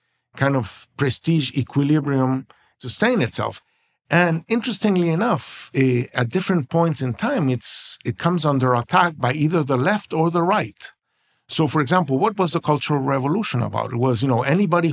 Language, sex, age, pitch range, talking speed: English, male, 50-69, 120-155 Hz, 160 wpm